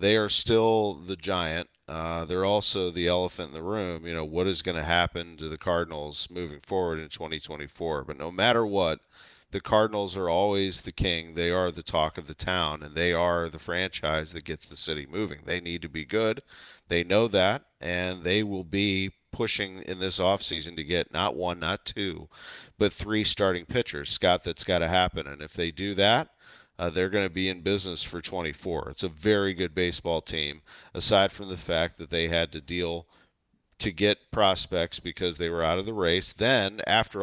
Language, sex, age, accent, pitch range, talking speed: English, male, 40-59, American, 85-100 Hz, 205 wpm